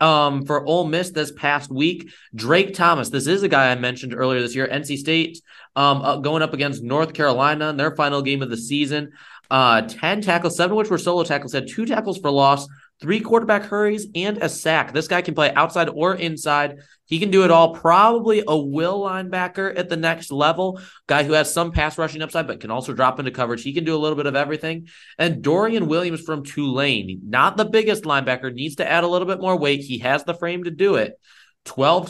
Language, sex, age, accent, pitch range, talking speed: English, male, 20-39, American, 125-160 Hz, 225 wpm